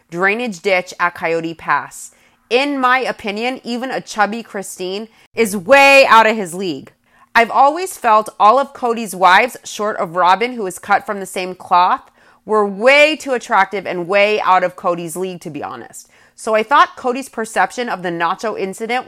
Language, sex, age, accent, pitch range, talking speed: English, female, 30-49, American, 180-235 Hz, 180 wpm